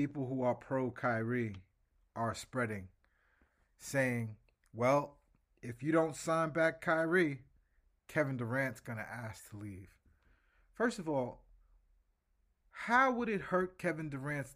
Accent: American